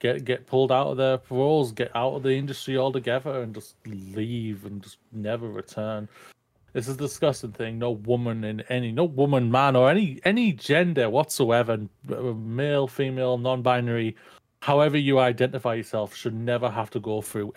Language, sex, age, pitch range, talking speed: English, male, 30-49, 110-130 Hz, 170 wpm